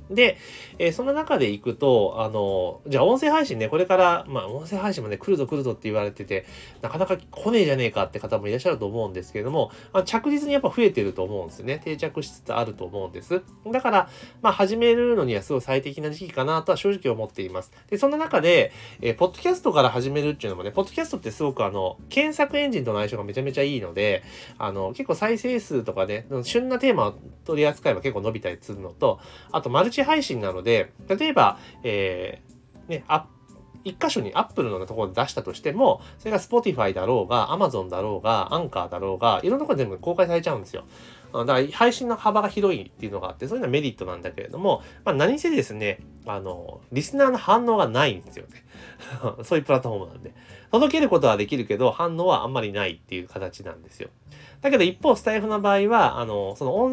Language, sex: Japanese, male